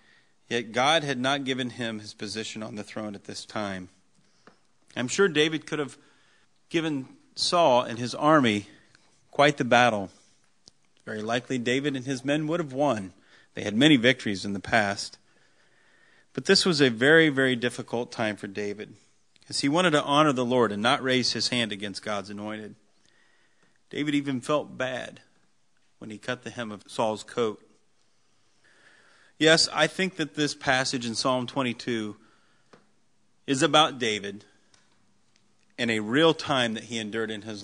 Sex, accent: male, American